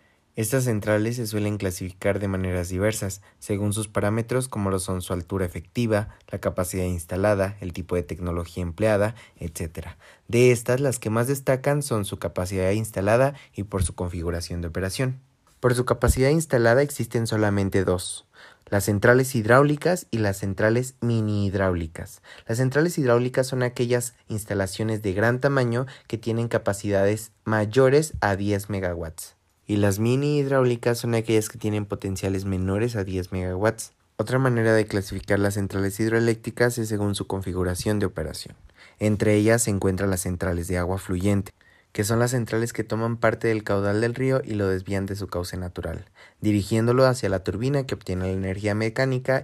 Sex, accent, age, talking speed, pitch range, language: male, Mexican, 20-39, 165 wpm, 95-115 Hz, Spanish